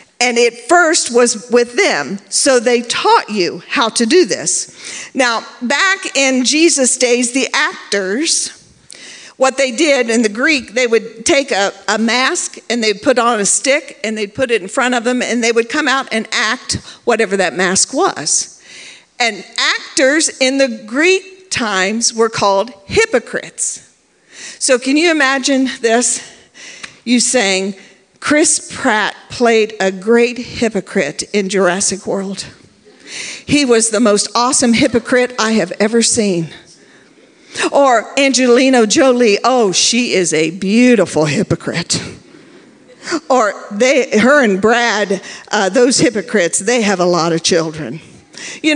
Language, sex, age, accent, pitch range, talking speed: English, female, 50-69, American, 215-300 Hz, 145 wpm